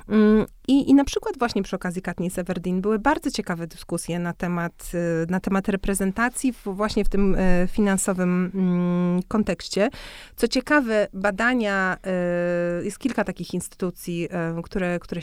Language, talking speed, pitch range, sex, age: Polish, 130 wpm, 185-225 Hz, female, 30-49